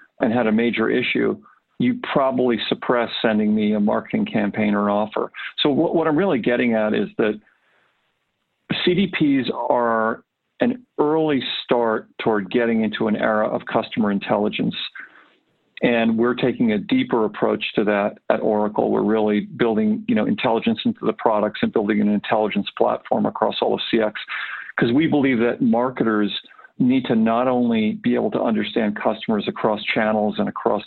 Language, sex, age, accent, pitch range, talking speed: English, male, 50-69, American, 105-135 Hz, 165 wpm